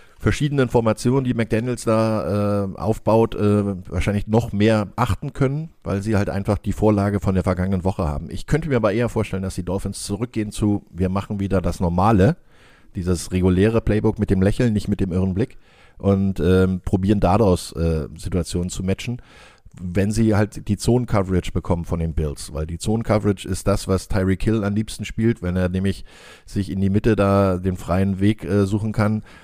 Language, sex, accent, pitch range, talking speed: German, male, German, 90-110 Hz, 195 wpm